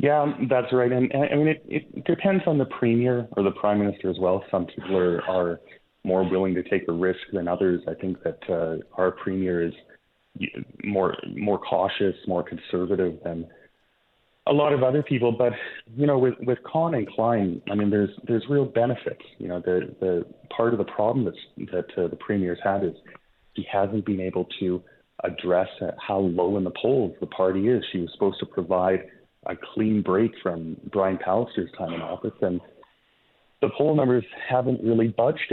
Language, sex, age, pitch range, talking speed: English, male, 30-49, 95-120 Hz, 195 wpm